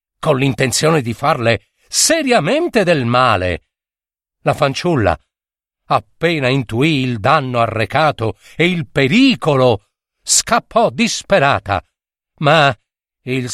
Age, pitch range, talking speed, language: 50-69, 135-195 Hz, 95 wpm, Italian